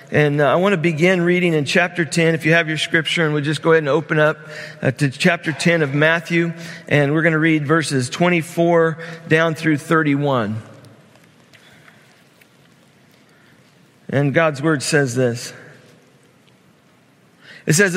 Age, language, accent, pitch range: 50-69, English, American, 145-175 Hz